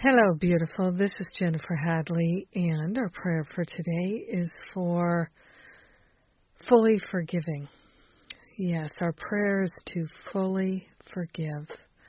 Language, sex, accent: English, female, American